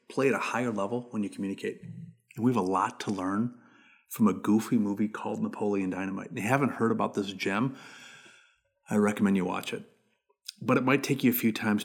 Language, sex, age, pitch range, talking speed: English, male, 30-49, 105-125 Hz, 220 wpm